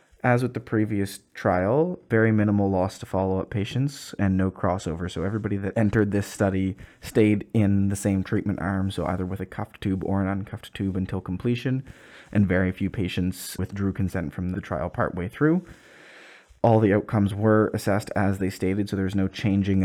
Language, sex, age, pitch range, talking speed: English, male, 20-39, 95-105 Hz, 185 wpm